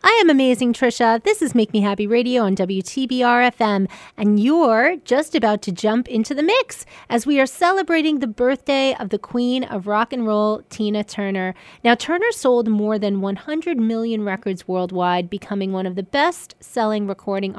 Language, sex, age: English, female, 30-49